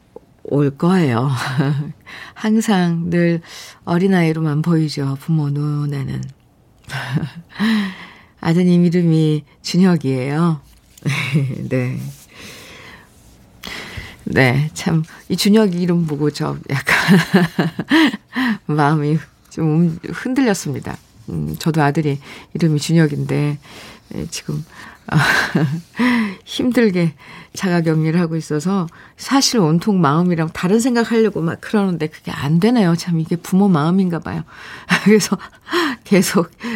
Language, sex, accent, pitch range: Korean, female, native, 150-190 Hz